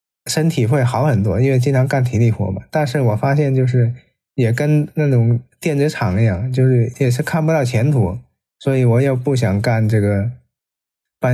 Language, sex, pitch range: Chinese, male, 120-140 Hz